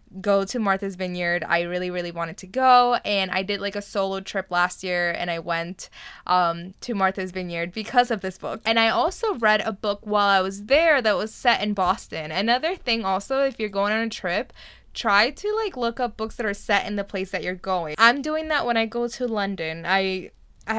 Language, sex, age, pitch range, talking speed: English, female, 10-29, 190-235 Hz, 230 wpm